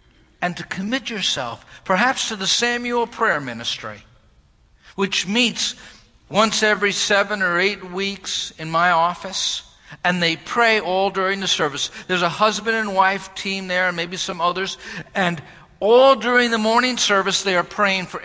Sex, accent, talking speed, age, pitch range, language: male, American, 160 wpm, 50-69, 175-215 Hz, English